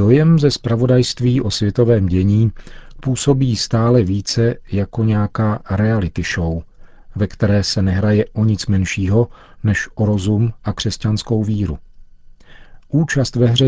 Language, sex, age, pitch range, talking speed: Czech, male, 40-59, 95-115 Hz, 125 wpm